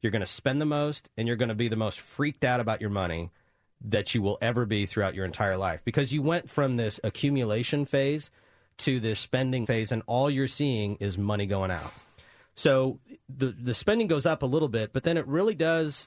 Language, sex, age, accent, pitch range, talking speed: English, male, 30-49, American, 110-140 Hz, 225 wpm